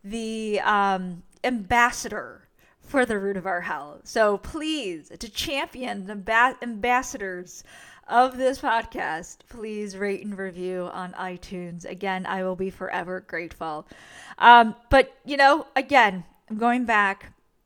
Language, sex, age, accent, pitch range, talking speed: English, female, 20-39, American, 190-240 Hz, 135 wpm